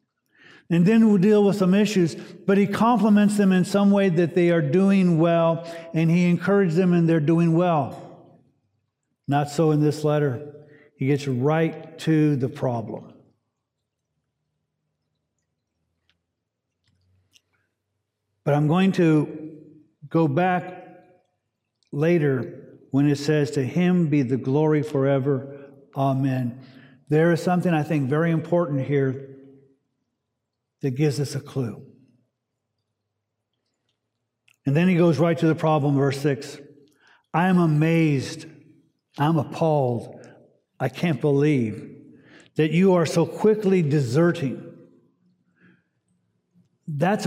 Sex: male